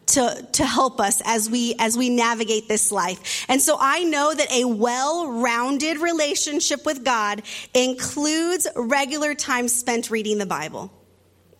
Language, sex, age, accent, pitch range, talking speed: English, female, 30-49, American, 230-305 Hz, 145 wpm